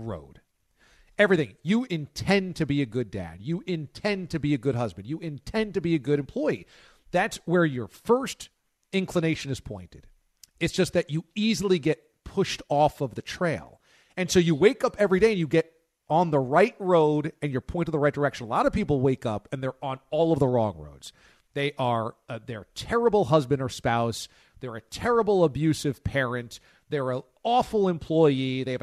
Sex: male